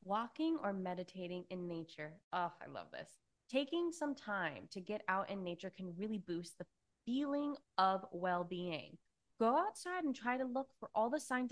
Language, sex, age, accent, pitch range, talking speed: English, female, 20-39, American, 185-245 Hz, 180 wpm